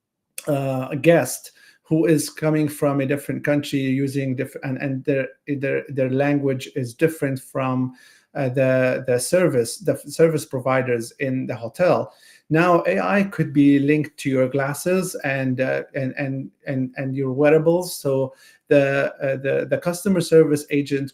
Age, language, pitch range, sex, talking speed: 50-69, English, 135-155 Hz, male, 155 wpm